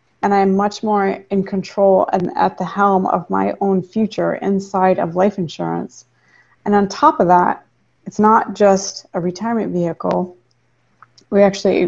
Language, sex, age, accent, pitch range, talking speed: English, female, 30-49, American, 180-205 Hz, 155 wpm